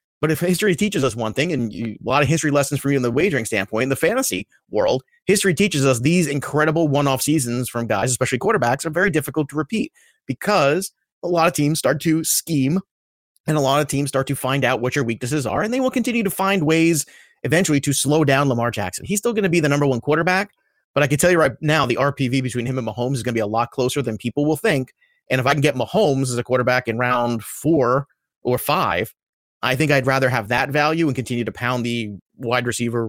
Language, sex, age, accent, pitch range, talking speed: English, male, 30-49, American, 120-160 Hz, 245 wpm